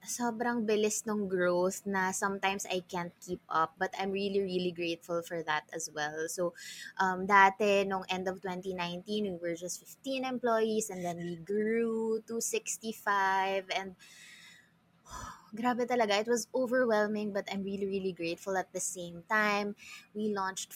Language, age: English, 20-39